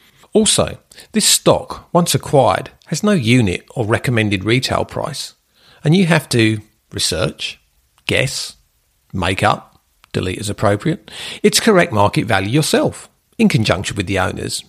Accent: British